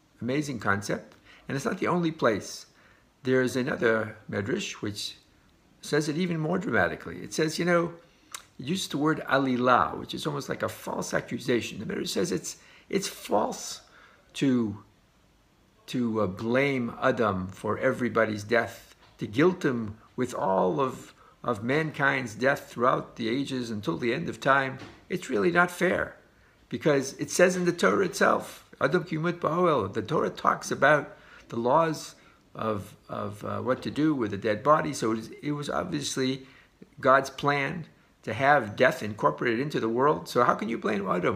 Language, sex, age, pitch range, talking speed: English, male, 50-69, 115-155 Hz, 160 wpm